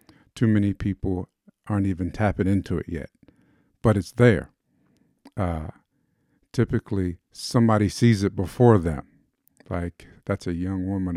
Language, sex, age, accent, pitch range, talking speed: English, male, 50-69, American, 95-115 Hz, 130 wpm